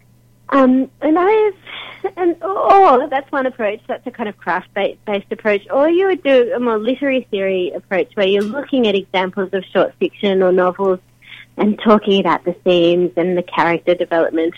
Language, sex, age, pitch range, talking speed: English, female, 30-49, 195-265 Hz, 175 wpm